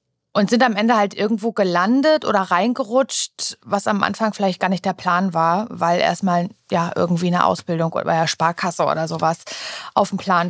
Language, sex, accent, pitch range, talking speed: German, female, German, 185-230 Hz, 185 wpm